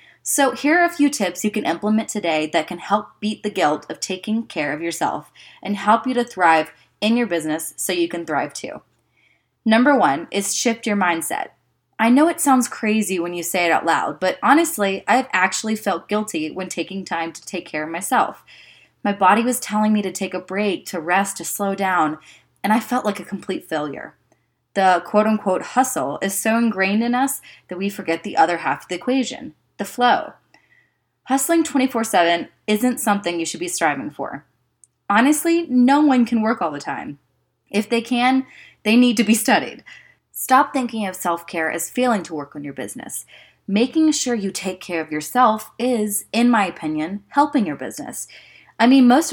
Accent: American